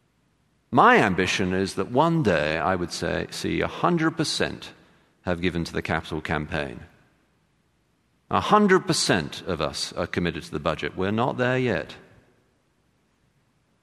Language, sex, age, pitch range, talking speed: English, male, 50-69, 95-135 Hz, 125 wpm